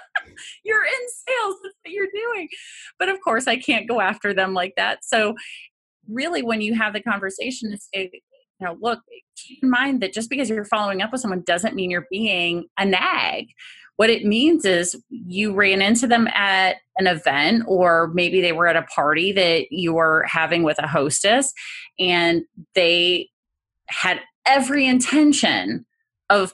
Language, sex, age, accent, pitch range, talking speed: English, female, 30-49, American, 180-240 Hz, 175 wpm